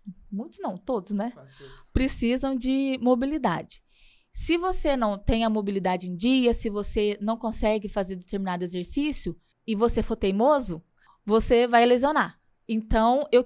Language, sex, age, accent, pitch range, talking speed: Portuguese, female, 20-39, Brazilian, 205-255 Hz, 140 wpm